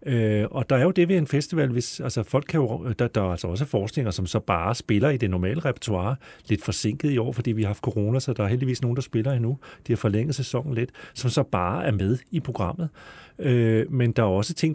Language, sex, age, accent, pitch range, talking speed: Danish, male, 40-59, native, 110-145 Hz, 255 wpm